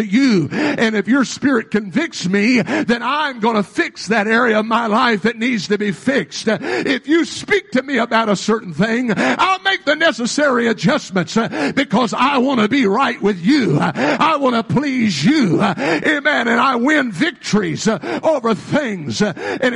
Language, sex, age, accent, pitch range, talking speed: English, male, 50-69, American, 220-290 Hz, 175 wpm